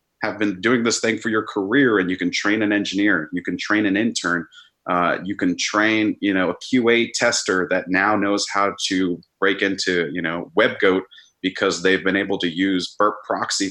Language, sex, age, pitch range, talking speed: English, male, 30-49, 90-115 Hz, 200 wpm